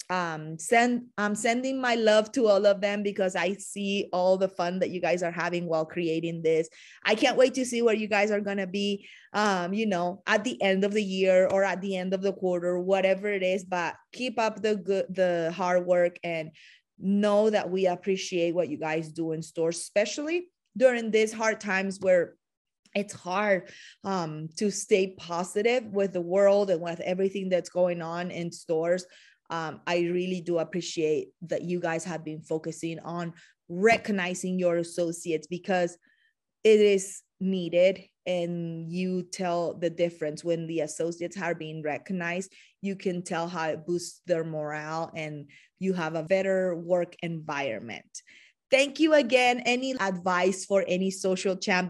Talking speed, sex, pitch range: 175 wpm, female, 170-205 Hz